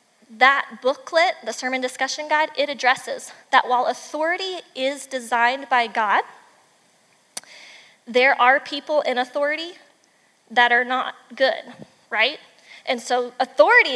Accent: American